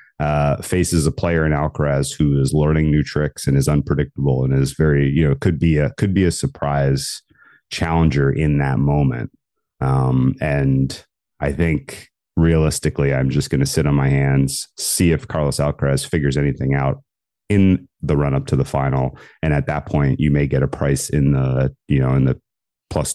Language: English